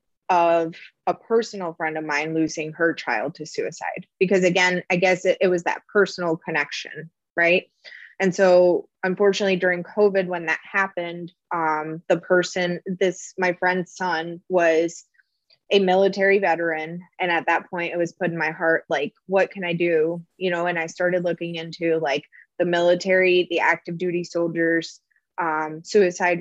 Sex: female